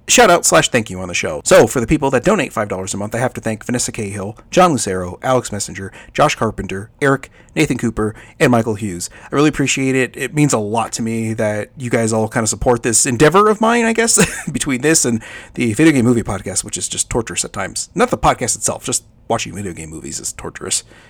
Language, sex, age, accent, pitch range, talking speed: English, male, 30-49, American, 110-140 Hz, 235 wpm